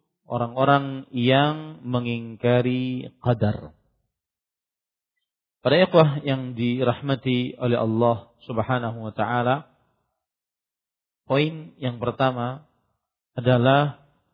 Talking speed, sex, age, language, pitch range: 70 wpm, male, 40-59, Malay, 120-145 Hz